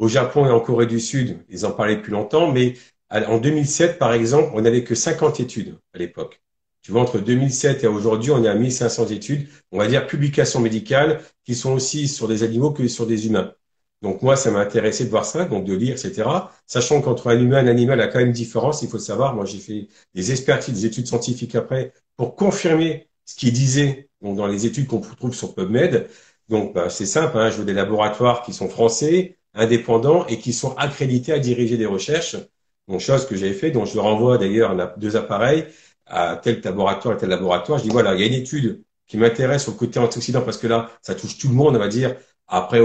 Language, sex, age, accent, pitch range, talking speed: French, male, 50-69, French, 110-135 Hz, 230 wpm